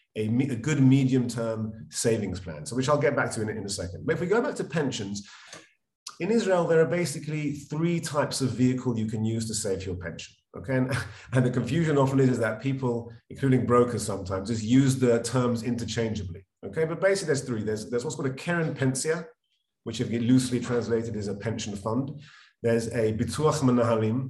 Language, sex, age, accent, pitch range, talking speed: English, male, 30-49, British, 110-145 Hz, 200 wpm